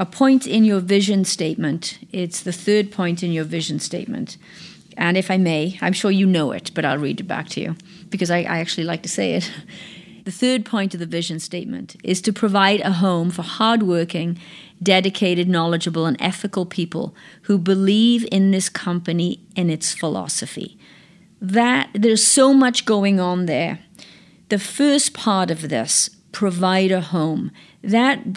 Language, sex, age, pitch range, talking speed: English, female, 40-59, 175-220 Hz, 170 wpm